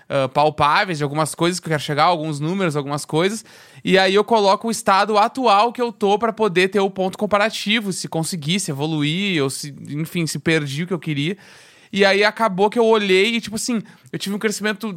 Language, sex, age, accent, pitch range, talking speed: Portuguese, male, 20-39, Brazilian, 160-215 Hz, 220 wpm